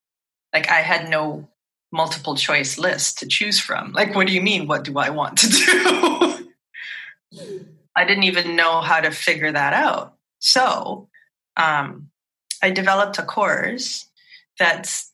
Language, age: English, 30-49